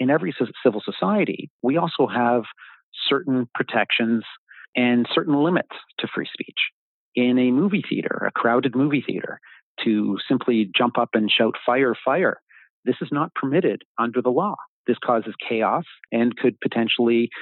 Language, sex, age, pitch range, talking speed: English, male, 40-59, 115-135 Hz, 150 wpm